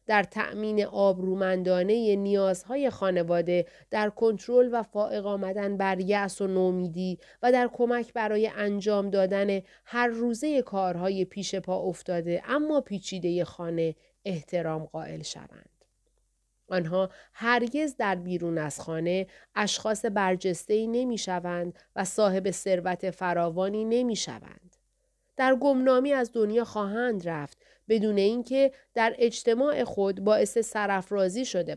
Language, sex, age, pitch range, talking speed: Persian, female, 30-49, 185-240 Hz, 120 wpm